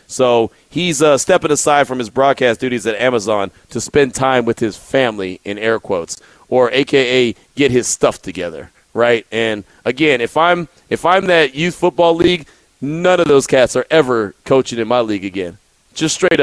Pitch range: 130-215 Hz